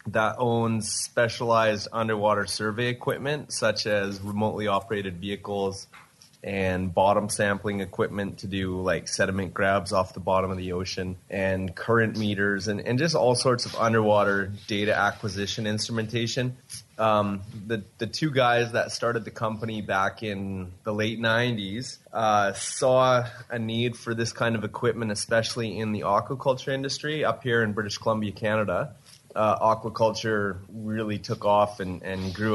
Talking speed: 150 wpm